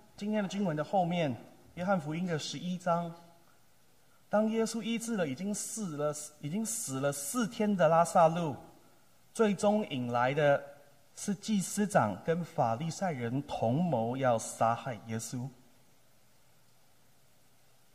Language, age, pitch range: Chinese, 30-49, 115-160 Hz